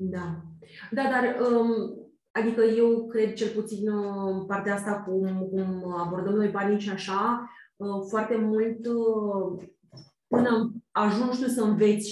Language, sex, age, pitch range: Romanian, female, 20-39, 200-230 Hz